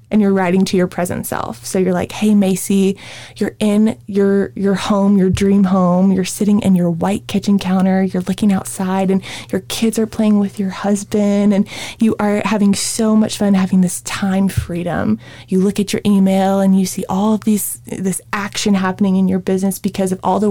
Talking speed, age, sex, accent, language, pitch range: 205 wpm, 20-39, female, American, English, 185-215 Hz